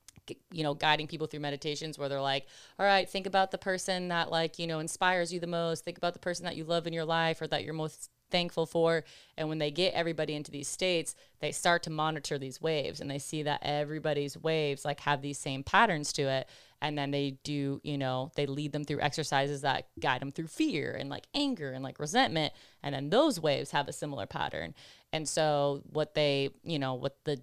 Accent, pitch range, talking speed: American, 145-165 Hz, 230 wpm